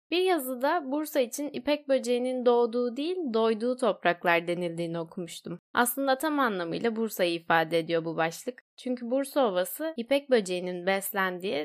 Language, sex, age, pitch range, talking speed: Turkish, female, 10-29, 175-245 Hz, 135 wpm